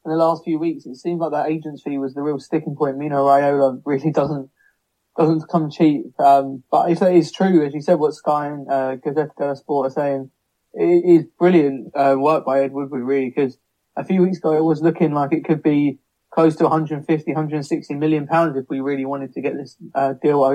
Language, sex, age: English, male, 20-39